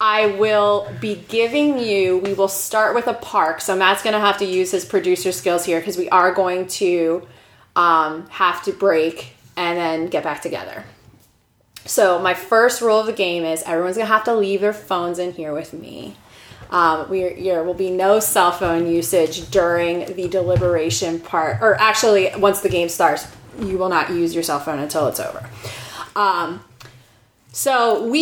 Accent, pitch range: American, 170-210 Hz